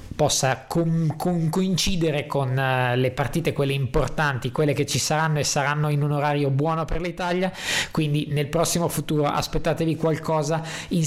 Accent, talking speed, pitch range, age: native, 140 wpm, 140-160 Hz, 20-39